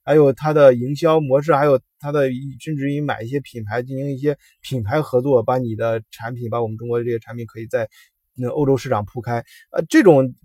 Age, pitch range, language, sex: 20-39, 120-165 Hz, Chinese, male